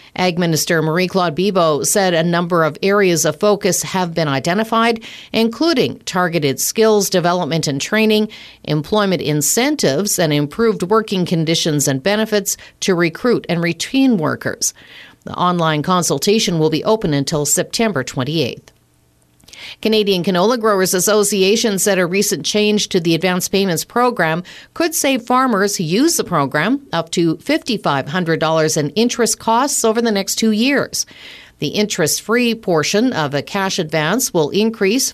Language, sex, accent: English, female, American